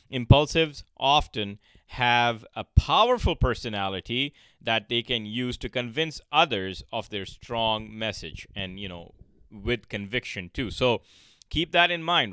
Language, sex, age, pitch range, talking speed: English, male, 30-49, 100-135 Hz, 135 wpm